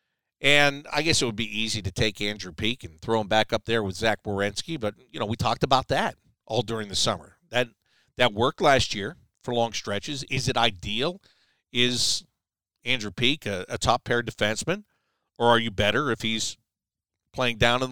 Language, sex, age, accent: English, male, 50-69, American